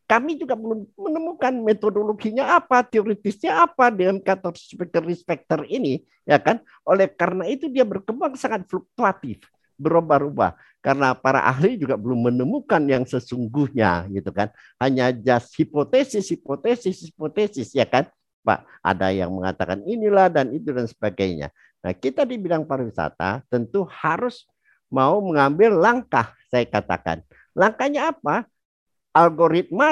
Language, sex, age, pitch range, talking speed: Indonesian, male, 50-69, 120-200 Hz, 125 wpm